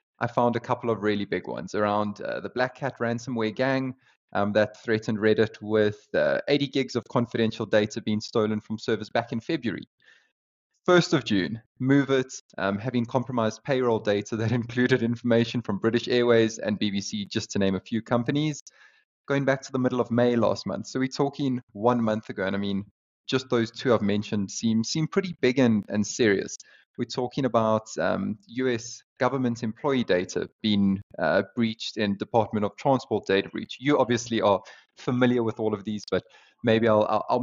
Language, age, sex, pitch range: English, 20-39, male, 105-130 Hz